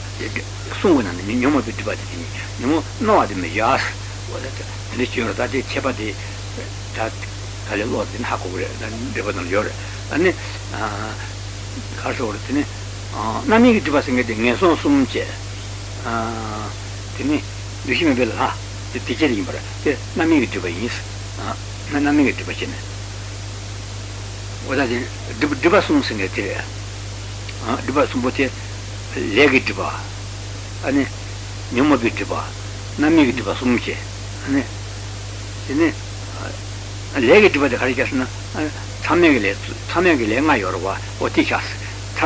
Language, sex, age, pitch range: Italian, male, 60-79, 100-115 Hz